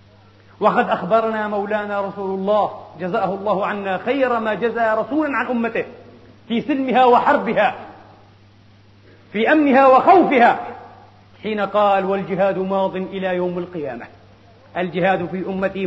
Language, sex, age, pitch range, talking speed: Arabic, male, 40-59, 180-250 Hz, 115 wpm